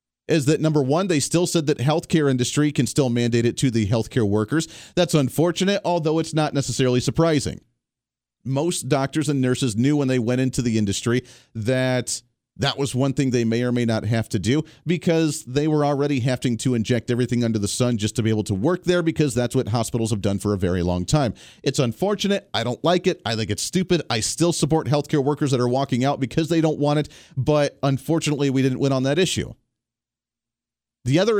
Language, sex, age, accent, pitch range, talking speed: English, male, 40-59, American, 115-150 Hz, 215 wpm